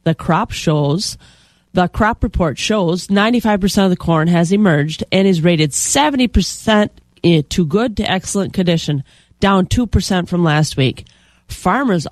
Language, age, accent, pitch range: English, 30-49, American, 155-200 Hz